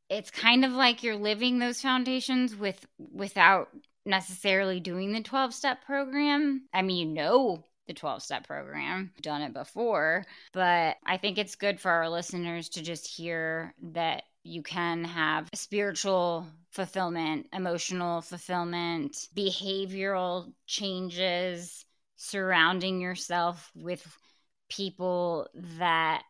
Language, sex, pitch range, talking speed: English, female, 165-190 Hz, 125 wpm